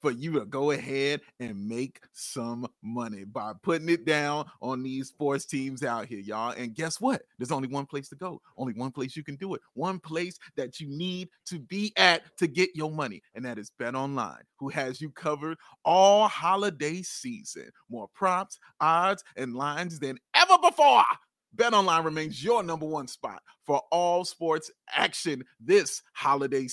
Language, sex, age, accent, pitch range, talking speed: English, male, 30-49, American, 140-210 Hz, 180 wpm